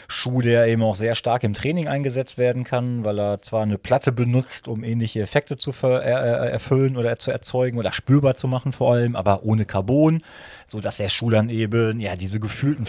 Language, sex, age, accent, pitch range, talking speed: German, male, 30-49, German, 110-125 Hz, 195 wpm